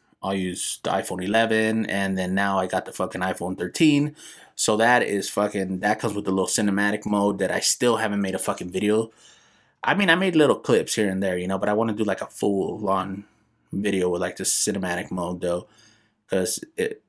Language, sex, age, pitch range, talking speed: English, male, 20-39, 100-130 Hz, 215 wpm